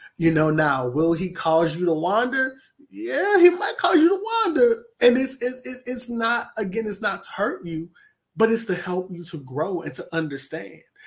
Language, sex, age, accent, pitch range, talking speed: English, male, 20-39, American, 150-185 Hz, 200 wpm